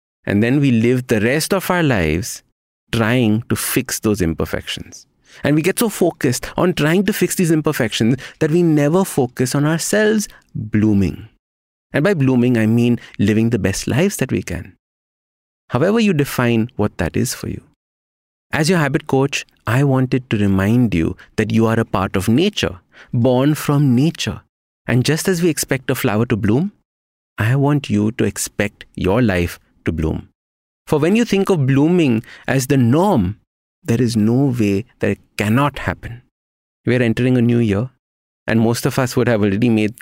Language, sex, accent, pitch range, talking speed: English, male, Indian, 105-140 Hz, 180 wpm